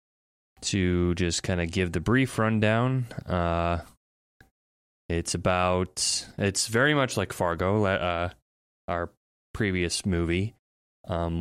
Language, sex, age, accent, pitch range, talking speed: English, male, 20-39, American, 80-95 Hz, 110 wpm